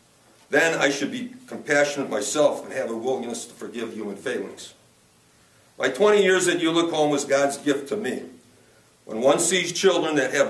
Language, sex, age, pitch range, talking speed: English, male, 50-69, 135-170 Hz, 170 wpm